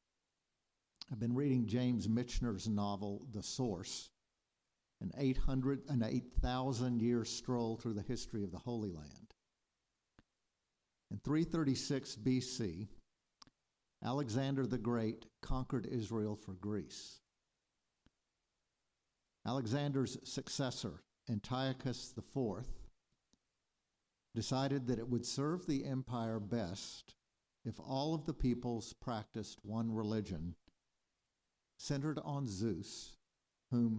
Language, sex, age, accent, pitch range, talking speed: English, male, 50-69, American, 110-135 Hz, 95 wpm